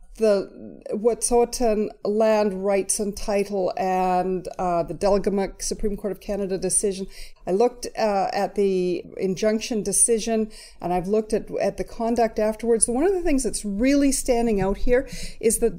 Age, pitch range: 40-59, 195-235 Hz